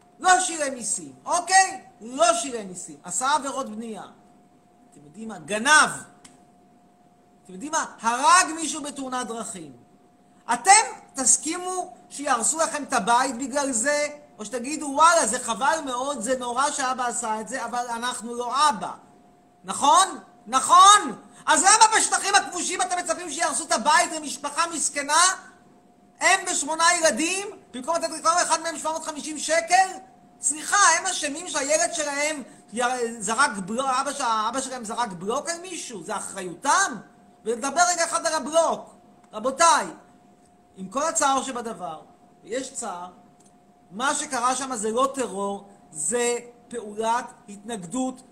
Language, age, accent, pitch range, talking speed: Hebrew, 40-59, native, 235-320 Hz, 130 wpm